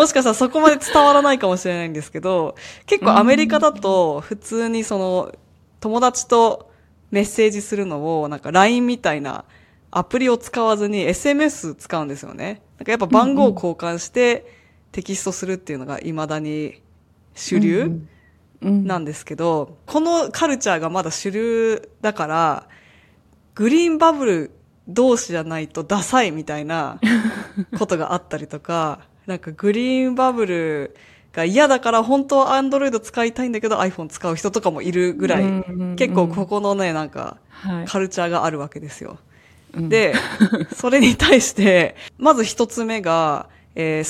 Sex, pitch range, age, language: female, 160-235 Hz, 20-39, Japanese